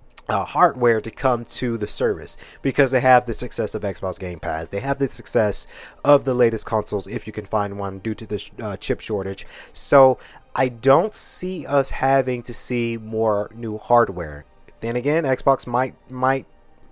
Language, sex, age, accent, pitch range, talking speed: English, male, 30-49, American, 110-135 Hz, 185 wpm